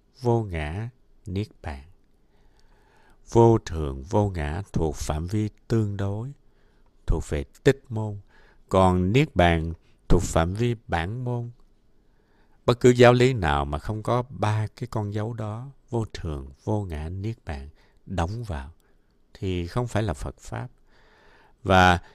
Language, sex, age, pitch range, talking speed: Vietnamese, male, 60-79, 85-115 Hz, 145 wpm